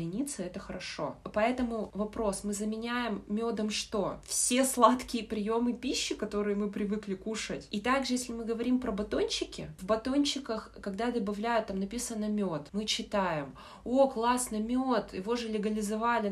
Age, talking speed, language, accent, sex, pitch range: 20-39, 140 wpm, Russian, native, female, 200-240 Hz